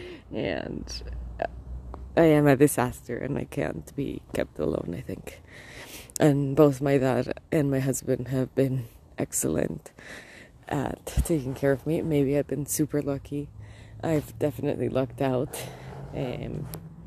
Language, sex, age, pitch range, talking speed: English, female, 20-39, 125-155 Hz, 135 wpm